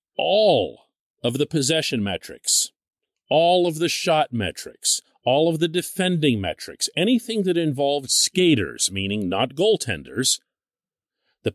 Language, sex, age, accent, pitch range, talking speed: English, male, 50-69, American, 105-175 Hz, 120 wpm